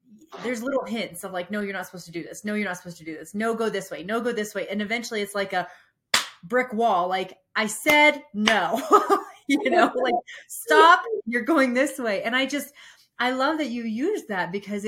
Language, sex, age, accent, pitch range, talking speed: English, female, 30-49, American, 190-250 Hz, 225 wpm